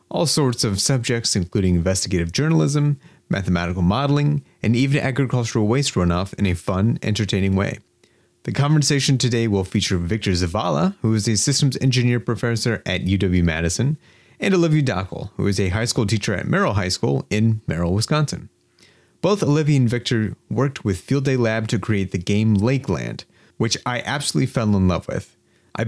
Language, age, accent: English, 30-49, American